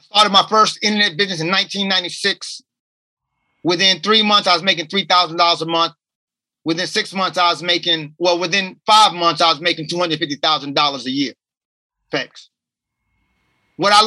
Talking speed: 150 wpm